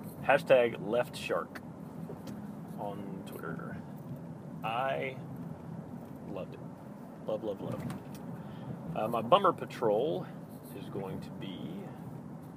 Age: 40-59